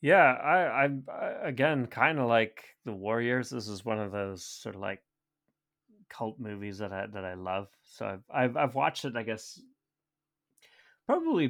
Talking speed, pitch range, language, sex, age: 170 wpm, 100-130 Hz, English, male, 30-49